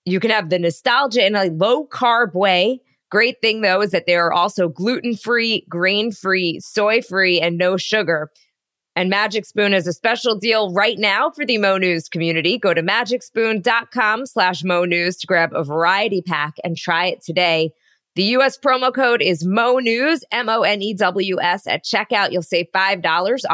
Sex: female